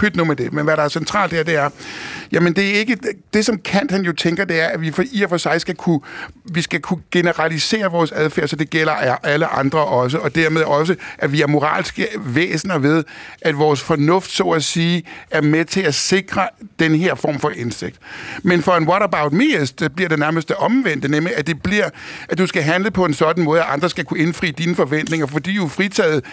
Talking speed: 235 wpm